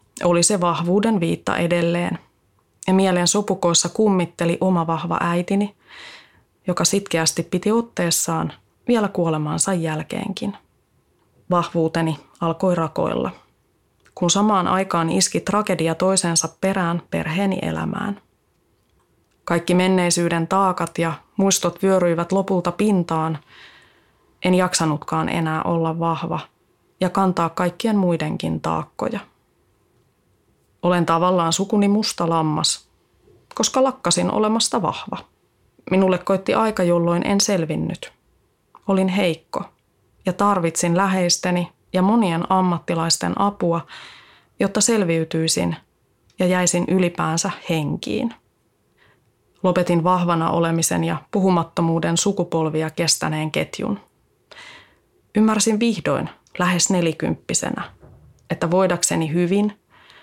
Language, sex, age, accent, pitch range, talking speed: Finnish, female, 20-39, native, 165-195 Hz, 95 wpm